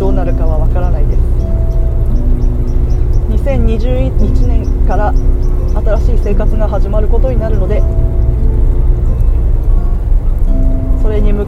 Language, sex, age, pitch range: Japanese, female, 20-39, 85-105 Hz